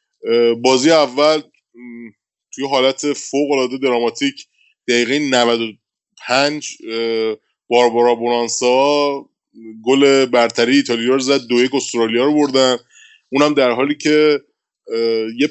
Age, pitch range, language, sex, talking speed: 20-39, 115-145 Hz, Persian, male, 90 wpm